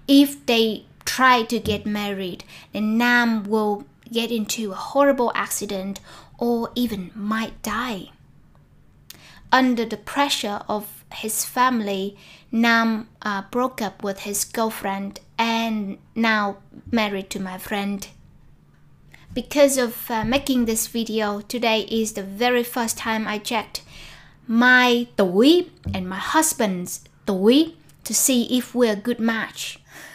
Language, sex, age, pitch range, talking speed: Vietnamese, female, 20-39, 205-240 Hz, 125 wpm